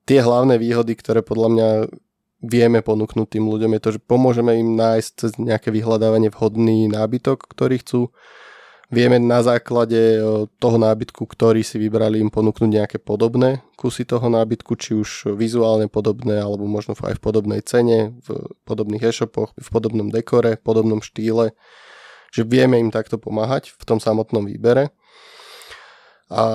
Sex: male